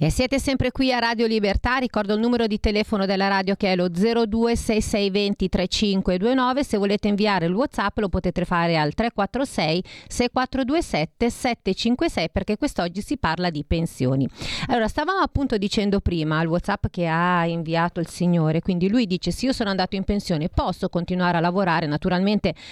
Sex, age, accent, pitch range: female, 40-59, native, 175-220 Hz